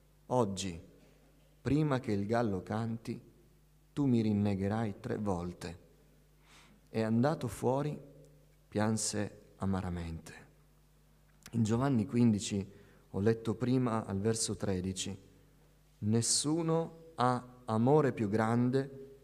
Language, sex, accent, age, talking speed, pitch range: Italian, male, native, 30-49, 95 wpm, 95-120 Hz